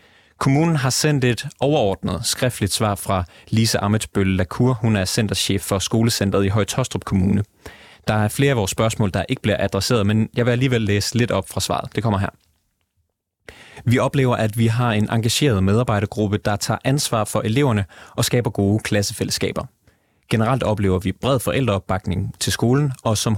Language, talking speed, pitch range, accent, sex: Danish, 170 wpm, 100-125 Hz, native, male